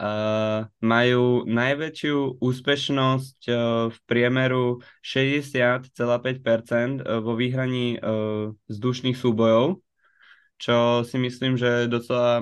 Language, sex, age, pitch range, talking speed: Slovak, male, 20-39, 115-125 Hz, 90 wpm